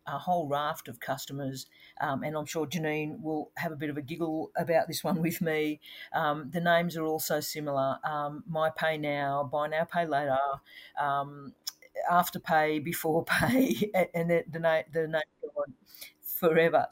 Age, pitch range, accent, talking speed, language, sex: 50-69, 140-170 Hz, Australian, 180 wpm, English, female